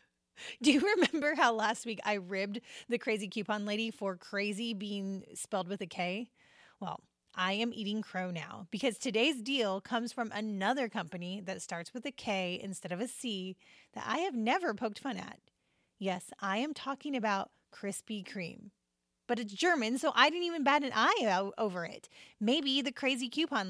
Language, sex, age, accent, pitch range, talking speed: English, female, 30-49, American, 195-255 Hz, 180 wpm